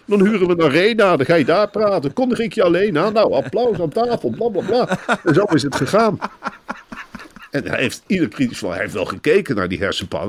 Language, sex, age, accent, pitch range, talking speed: Dutch, male, 50-69, Dutch, 170-255 Hz, 225 wpm